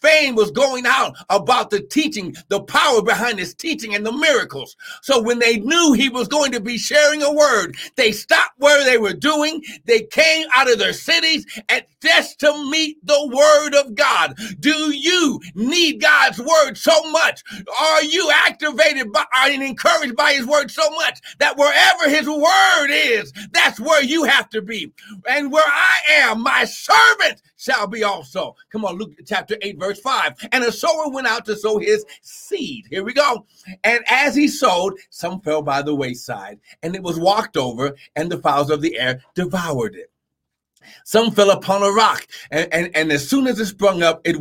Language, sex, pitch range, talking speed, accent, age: English, male, 185-295 Hz, 190 wpm, American, 50-69